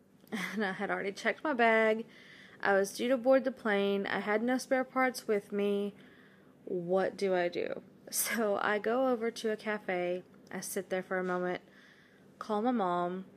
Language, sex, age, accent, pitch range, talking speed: English, female, 20-39, American, 195-230 Hz, 185 wpm